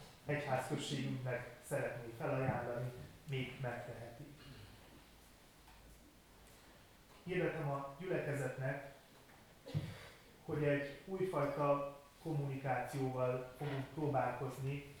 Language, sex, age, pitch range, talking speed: Hungarian, male, 30-49, 125-145 Hz, 55 wpm